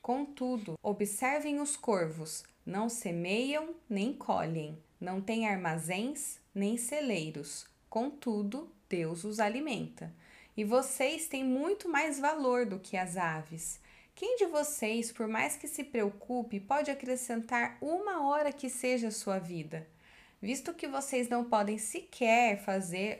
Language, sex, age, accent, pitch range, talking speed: Portuguese, female, 20-39, Brazilian, 200-255 Hz, 130 wpm